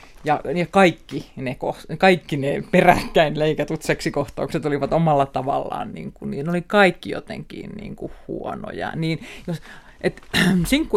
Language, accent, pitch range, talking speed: Finnish, native, 145-180 Hz, 125 wpm